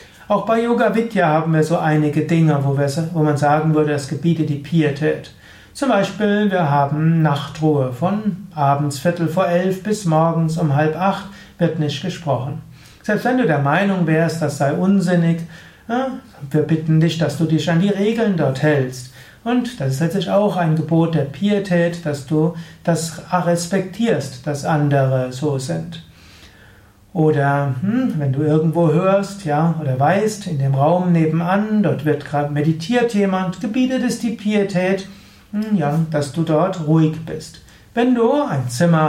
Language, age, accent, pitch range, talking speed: German, 60-79, German, 150-195 Hz, 165 wpm